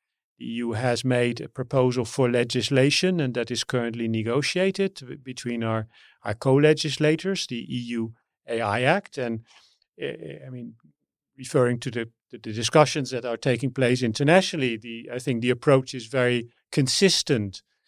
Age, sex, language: 40-59, male, English